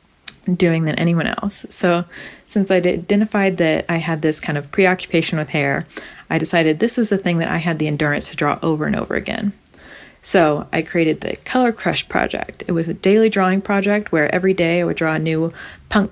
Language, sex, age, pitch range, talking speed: English, female, 30-49, 165-205 Hz, 210 wpm